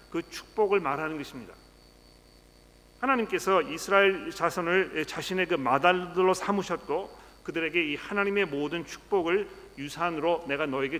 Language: Korean